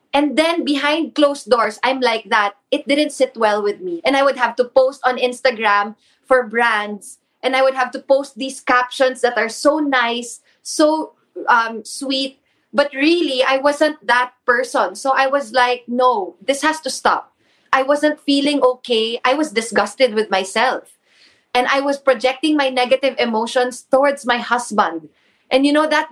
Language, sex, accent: English, female, Filipino